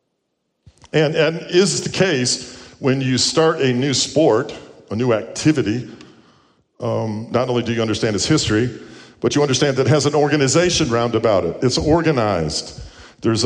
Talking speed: 160 wpm